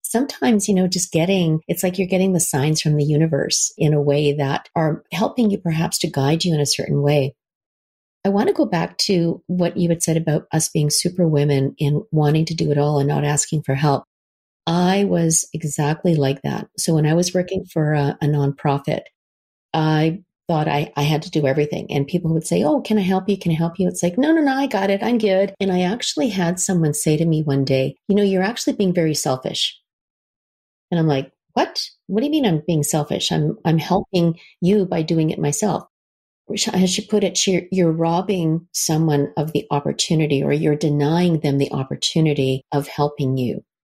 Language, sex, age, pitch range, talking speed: English, female, 40-59, 145-185 Hz, 210 wpm